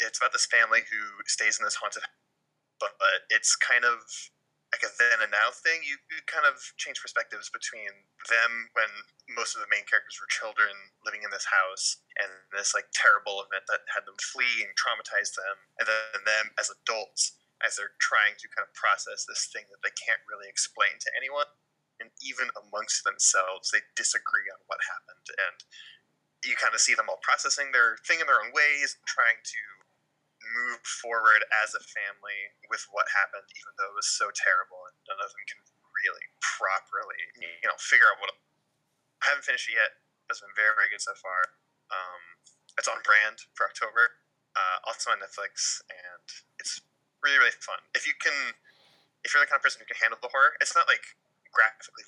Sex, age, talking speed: male, 20-39, 195 wpm